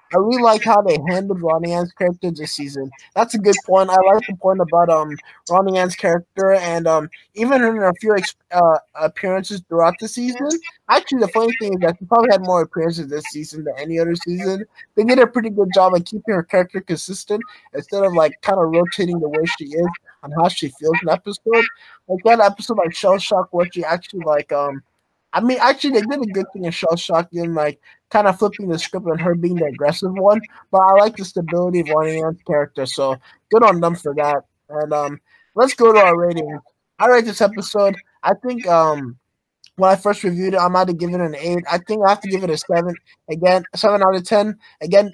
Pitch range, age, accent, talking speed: 165-205 Hz, 20-39, American, 225 wpm